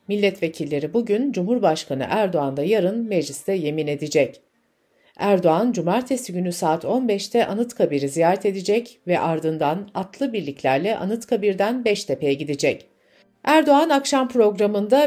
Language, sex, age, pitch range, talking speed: Turkish, female, 60-79, 160-235 Hz, 105 wpm